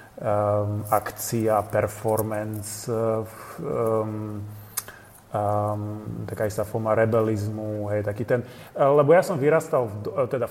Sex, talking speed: male, 105 wpm